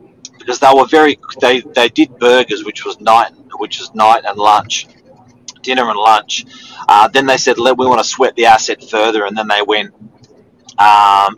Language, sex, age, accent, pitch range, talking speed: English, male, 30-49, Australian, 110-140 Hz, 190 wpm